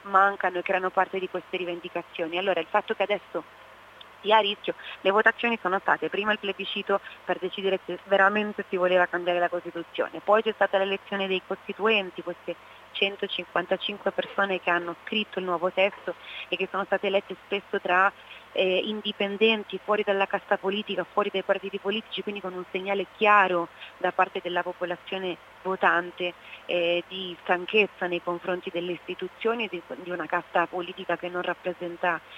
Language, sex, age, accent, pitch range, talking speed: Italian, female, 30-49, native, 175-200 Hz, 165 wpm